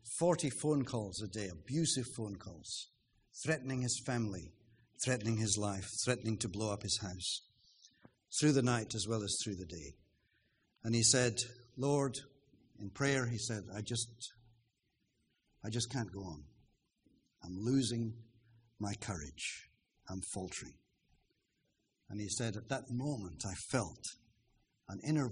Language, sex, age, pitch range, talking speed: English, male, 60-79, 100-125 Hz, 140 wpm